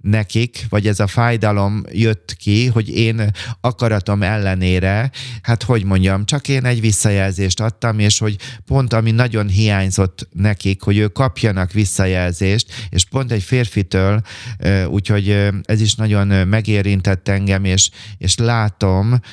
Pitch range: 95-110 Hz